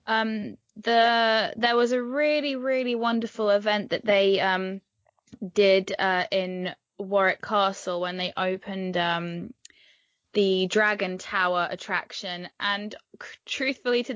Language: English